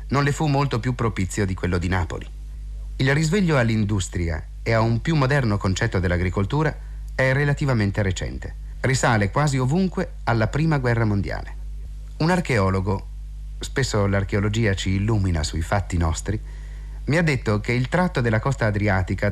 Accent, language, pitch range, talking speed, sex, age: native, Italian, 95-140 Hz, 150 wpm, male, 30-49